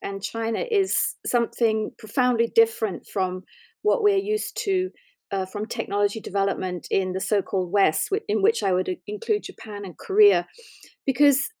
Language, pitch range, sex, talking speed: English, 200-280 Hz, female, 145 wpm